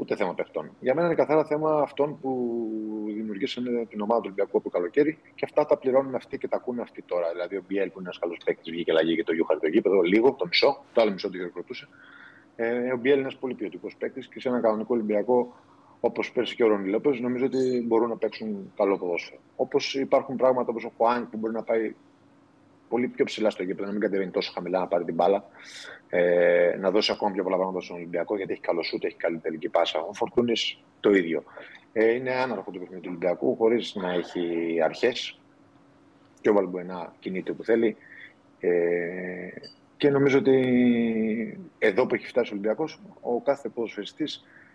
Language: Greek